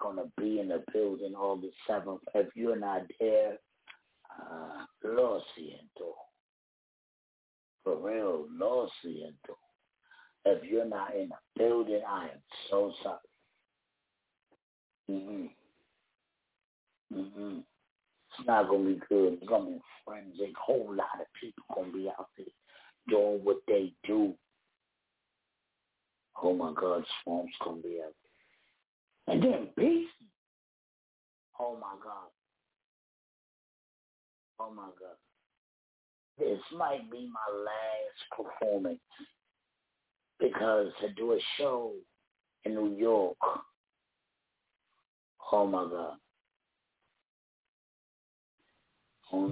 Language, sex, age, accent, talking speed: English, male, 50-69, American, 105 wpm